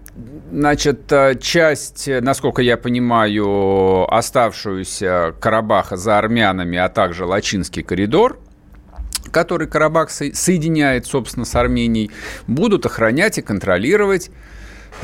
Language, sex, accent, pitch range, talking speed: Russian, male, native, 110-165 Hz, 90 wpm